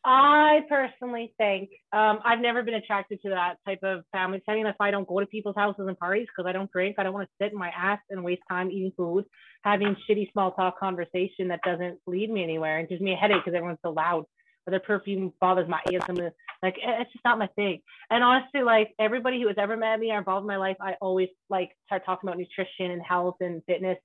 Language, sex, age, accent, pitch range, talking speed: English, female, 30-49, American, 185-220 Hz, 245 wpm